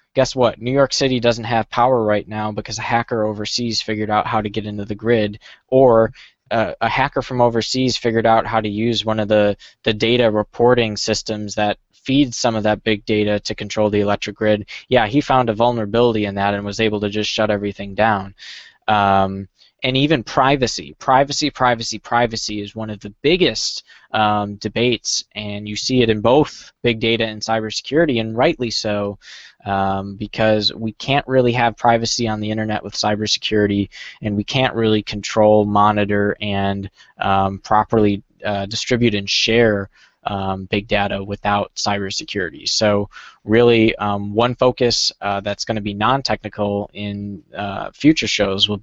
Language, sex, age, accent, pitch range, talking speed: English, male, 20-39, American, 105-120 Hz, 170 wpm